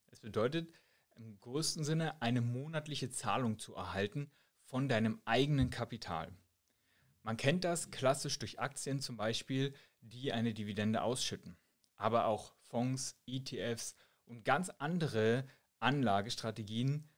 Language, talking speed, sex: German, 120 wpm, male